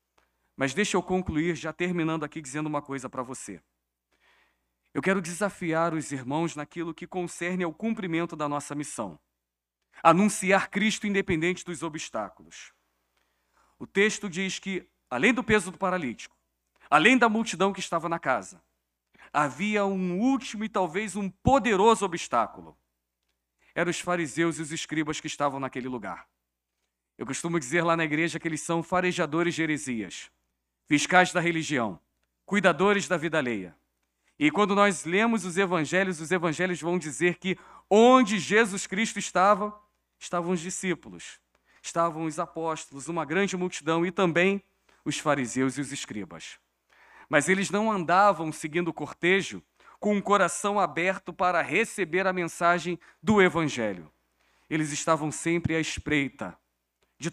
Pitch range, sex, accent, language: 140-190 Hz, male, Brazilian, Portuguese